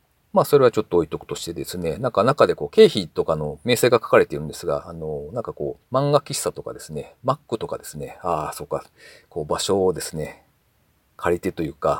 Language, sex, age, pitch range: Japanese, male, 40-59, 90-145 Hz